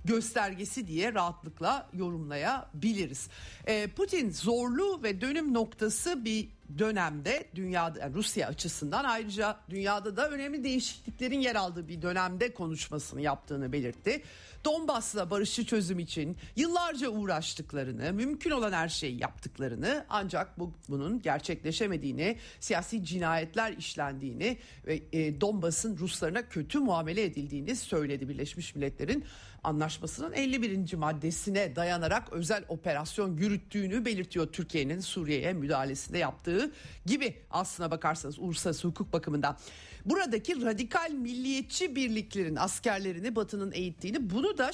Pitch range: 160-230 Hz